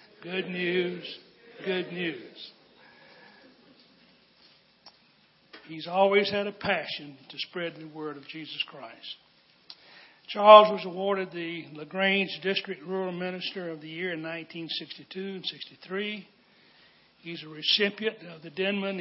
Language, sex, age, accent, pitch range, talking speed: English, male, 60-79, American, 160-190 Hz, 115 wpm